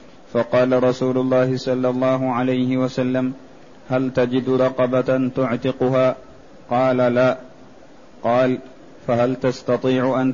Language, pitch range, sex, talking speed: Arabic, 125-130 Hz, male, 100 wpm